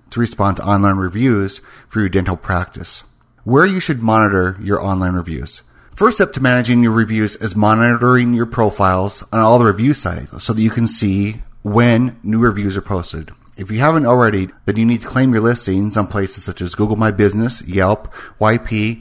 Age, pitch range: 40-59, 100-120 Hz